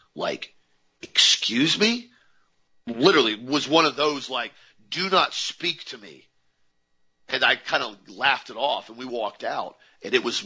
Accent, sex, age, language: American, male, 40-59, English